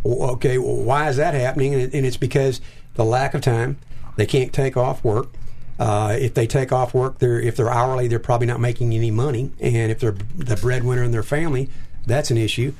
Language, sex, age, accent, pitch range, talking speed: English, male, 50-69, American, 115-135 Hz, 210 wpm